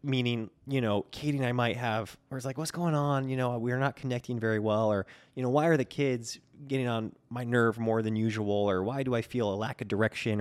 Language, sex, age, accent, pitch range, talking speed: English, male, 20-39, American, 100-125 Hz, 255 wpm